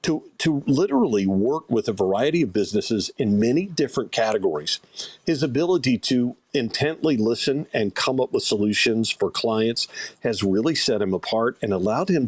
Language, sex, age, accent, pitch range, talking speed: English, male, 50-69, American, 105-145 Hz, 160 wpm